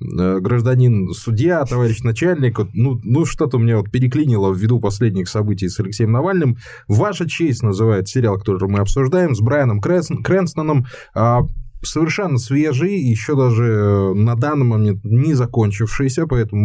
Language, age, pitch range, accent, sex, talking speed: Russian, 20-39, 110-145 Hz, native, male, 135 wpm